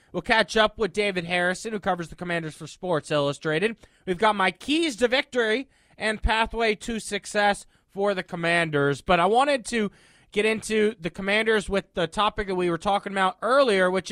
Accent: American